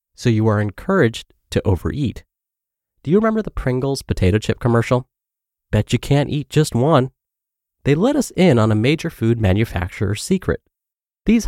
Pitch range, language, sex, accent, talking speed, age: 100-135 Hz, English, male, American, 160 wpm, 30-49